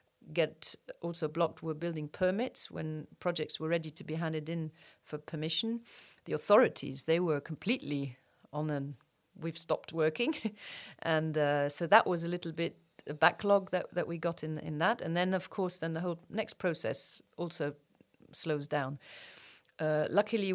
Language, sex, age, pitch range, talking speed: English, female, 40-59, 155-190 Hz, 165 wpm